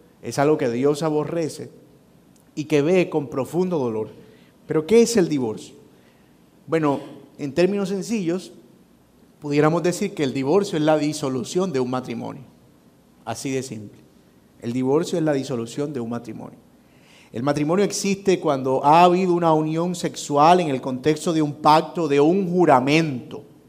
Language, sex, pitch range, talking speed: Spanish, male, 135-180 Hz, 150 wpm